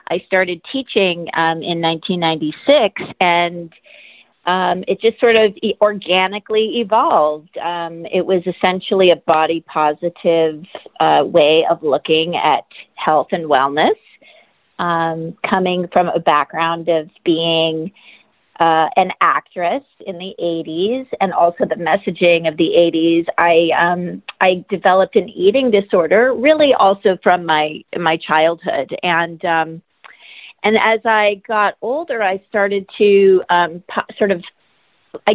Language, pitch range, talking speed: English, 165-205 Hz, 130 wpm